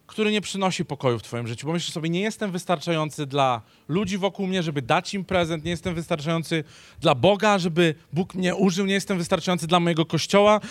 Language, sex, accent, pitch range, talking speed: Polish, male, native, 160-210 Hz, 200 wpm